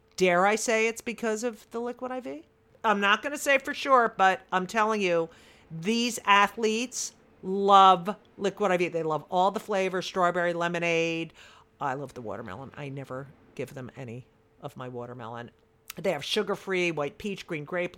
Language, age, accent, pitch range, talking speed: English, 50-69, American, 160-220 Hz, 170 wpm